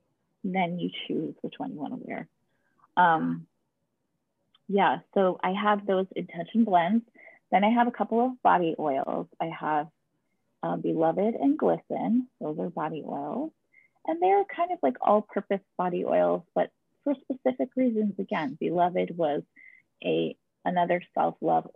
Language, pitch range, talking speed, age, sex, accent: English, 165-230 Hz, 145 wpm, 30-49, female, American